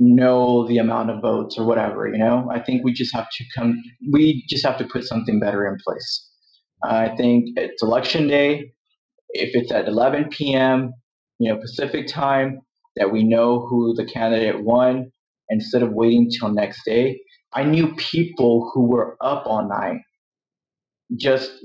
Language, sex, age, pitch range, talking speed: English, male, 30-49, 115-135 Hz, 170 wpm